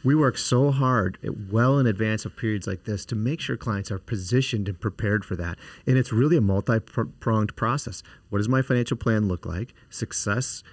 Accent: American